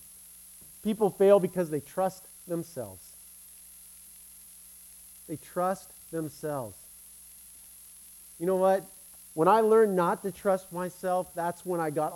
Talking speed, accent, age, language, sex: 115 wpm, American, 50-69, English, male